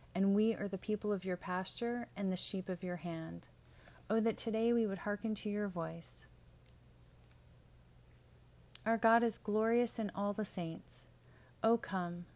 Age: 30-49